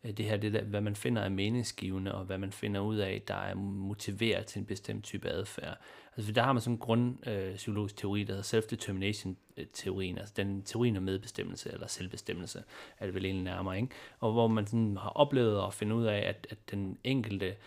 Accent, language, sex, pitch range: native, Danish, male, 100-115 Hz